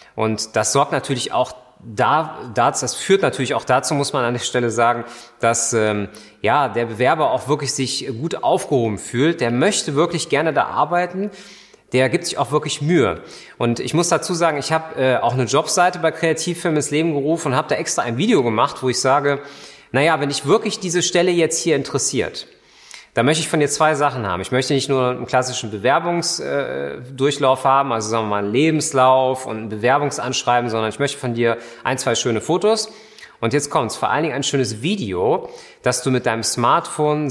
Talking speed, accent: 200 wpm, German